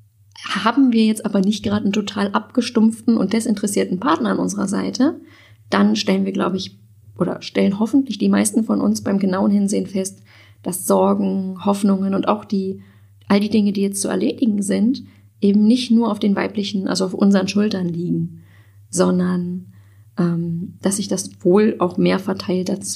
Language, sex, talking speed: German, female, 175 wpm